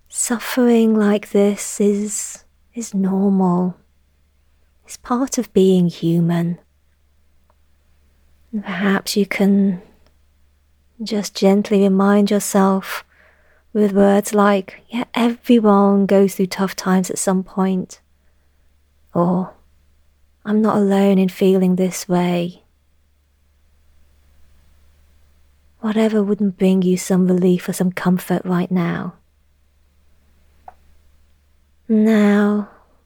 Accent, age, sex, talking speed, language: British, 30-49, female, 90 wpm, English